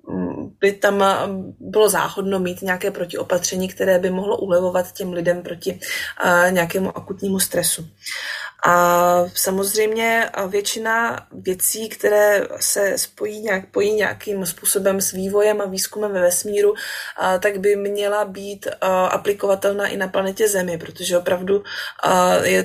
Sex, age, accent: female, 20-39, native